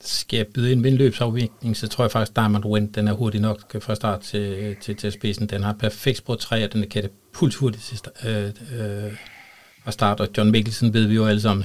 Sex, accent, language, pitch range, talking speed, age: male, native, Danish, 105-125 Hz, 225 wpm, 60-79